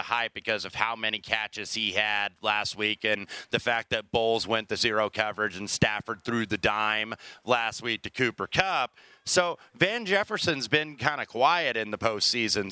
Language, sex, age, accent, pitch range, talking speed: English, male, 30-49, American, 110-140 Hz, 185 wpm